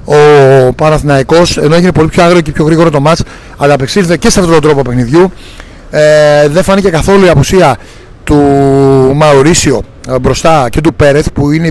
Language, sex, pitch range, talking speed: Greek, male, 140-175 Hz, 175 wpm